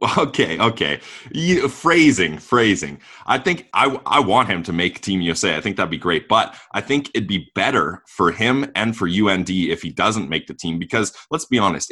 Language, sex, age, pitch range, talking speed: English, male, 20-39, 85-125 Hz, 200 wpm